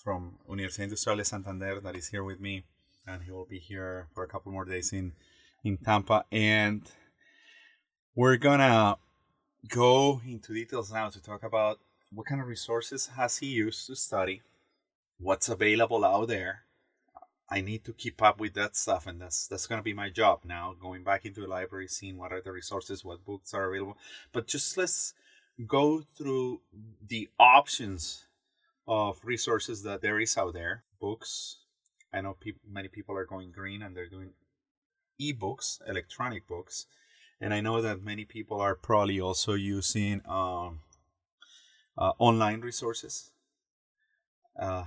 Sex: male